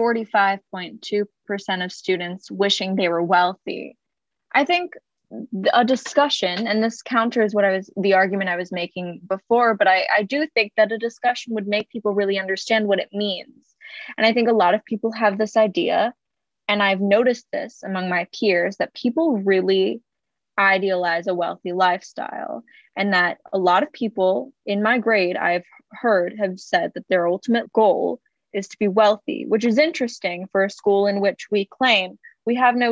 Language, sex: English, female